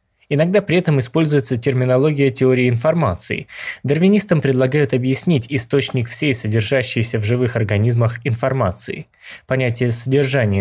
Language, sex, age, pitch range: Russian, male, 20-39, 110-150 Hz